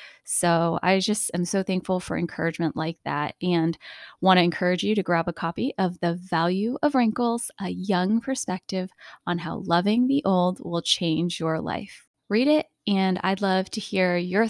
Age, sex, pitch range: 20-39, female, 180-215 Hz